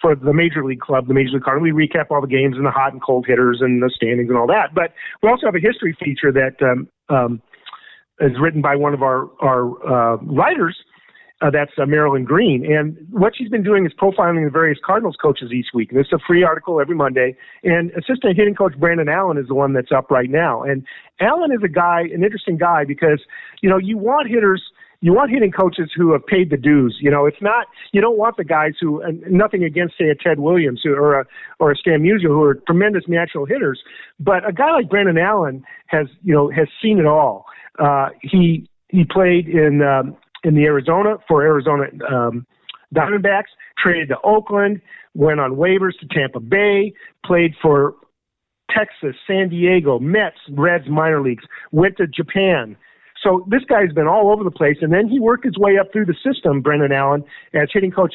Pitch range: 145-190 Hz